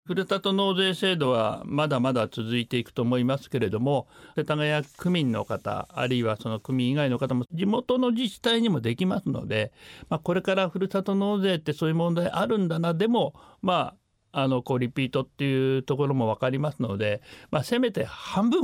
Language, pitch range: Japanese, 120-175 Hz